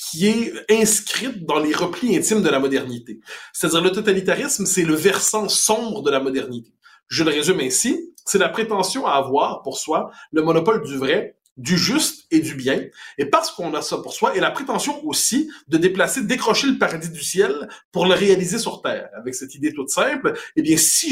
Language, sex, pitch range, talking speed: French, male, 150-235 Hz, 200 wpm